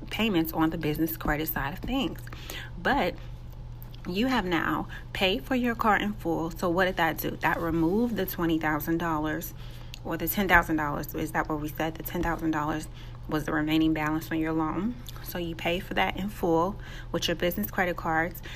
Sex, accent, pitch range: female, American, 155-180 Hz